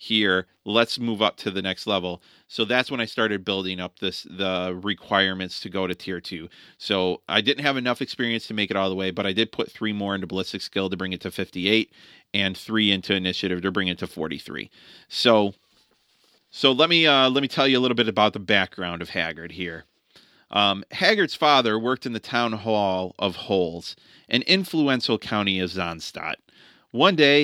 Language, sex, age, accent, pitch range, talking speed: English, male, 30-49, American, 95-125 Hz, 205 wpm